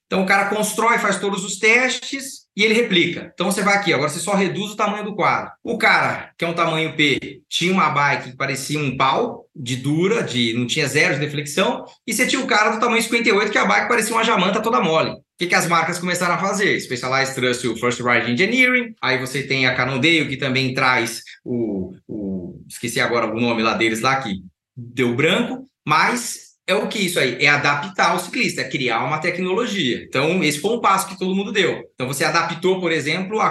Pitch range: 130-190 Hz